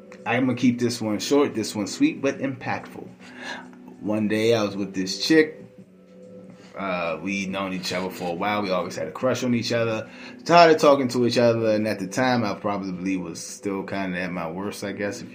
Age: 20-39